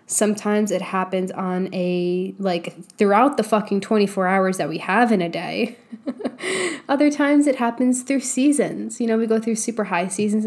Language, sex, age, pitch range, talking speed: English, female, 10-29, 195-245 Hz, 180 wpm